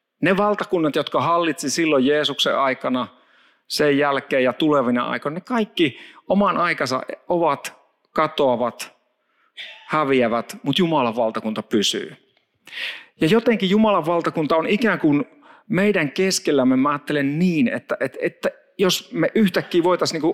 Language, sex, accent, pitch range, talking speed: Finnish, male, native, 135-210 Hz, 125 wpm